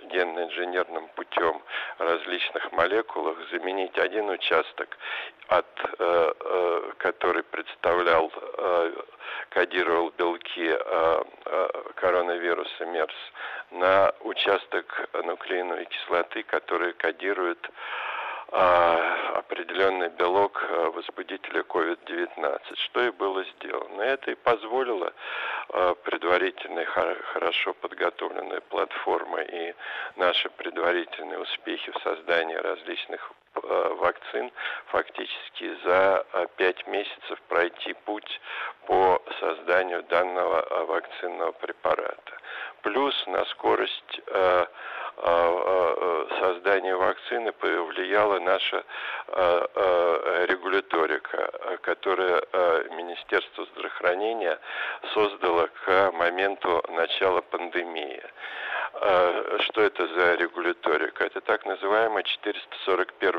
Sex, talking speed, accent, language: male, 75 wpm, native, Russian